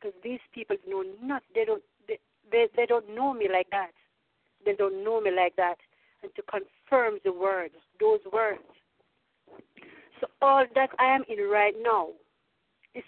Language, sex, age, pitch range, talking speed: English, female, 50-69, 205-305 Hz, 165 wpm